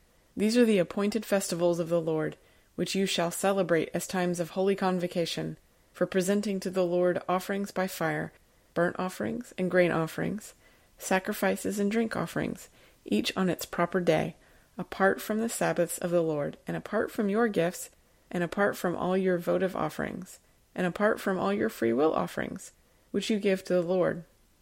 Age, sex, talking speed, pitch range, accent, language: 30-49, female, 175 wpm, 175-200 Hz, American, English